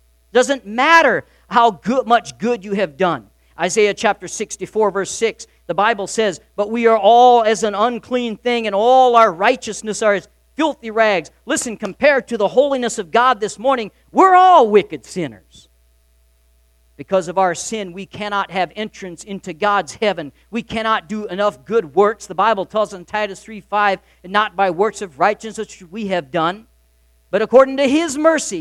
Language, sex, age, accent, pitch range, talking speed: English, male, 50-69, American, 175-240 Hz, 180 wpm